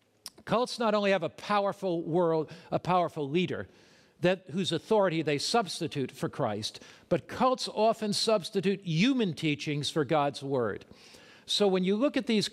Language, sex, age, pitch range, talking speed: English, male, 50-69, 150-195 Hz, 155 wpm